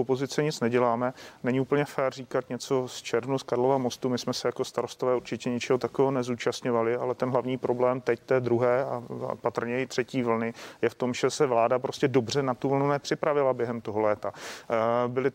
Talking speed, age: 195 wpm, 40-59